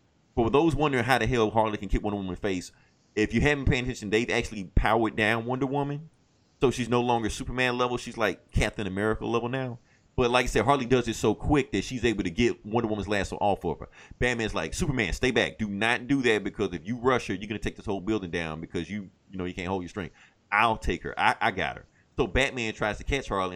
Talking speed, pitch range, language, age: 255 wpm, 95-125 Hz, English, 30-49